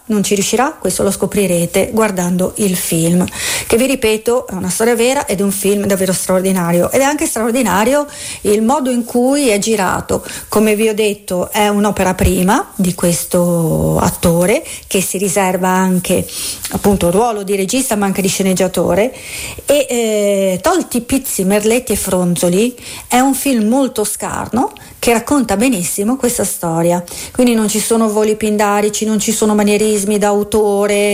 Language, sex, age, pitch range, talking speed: Italian, female, 40-59, 195-235 Hz, 160 wpm